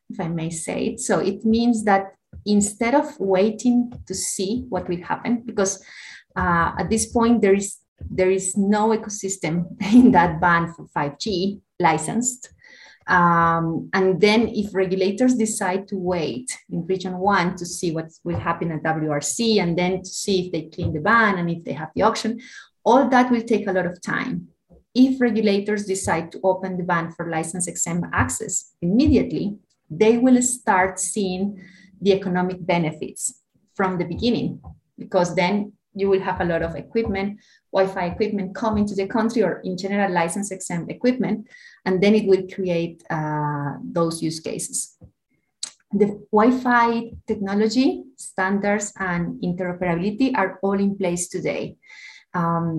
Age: 30-49